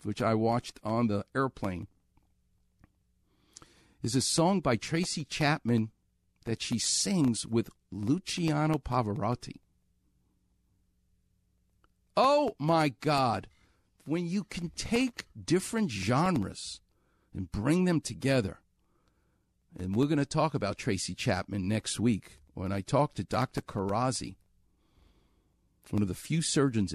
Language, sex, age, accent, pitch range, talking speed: English, male, 50-69, American, 95-150 Hz, 115 wpm